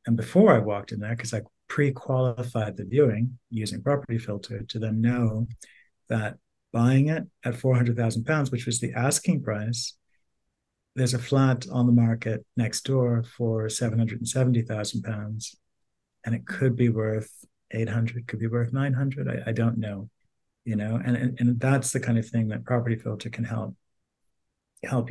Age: 50-69